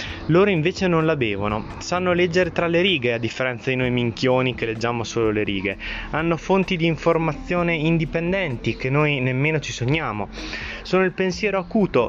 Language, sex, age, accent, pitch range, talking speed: Italian, male, 20-39, native, 115-170 Hz, 170 wpm